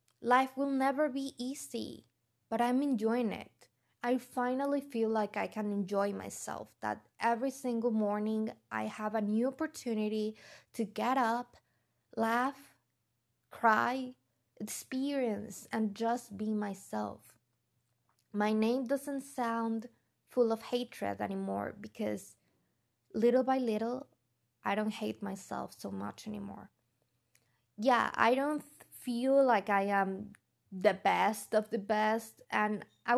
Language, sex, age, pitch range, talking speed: English, female, 20-39, 205-255 Hz, 125 wpm